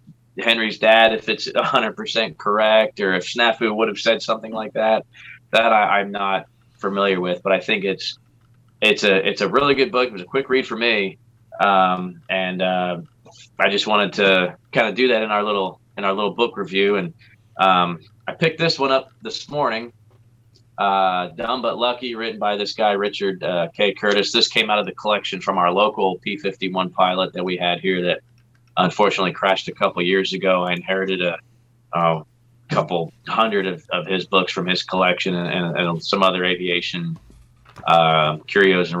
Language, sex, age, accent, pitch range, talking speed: English, male, 20-39, American, 90-115 Hz, 190 wpm